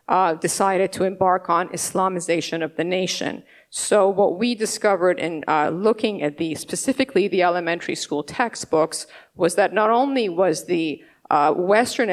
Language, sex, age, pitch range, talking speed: English, female, 50-69, 170-210 Hz, 155 wpm